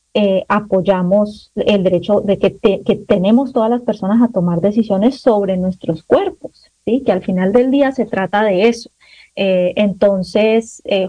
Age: 30-49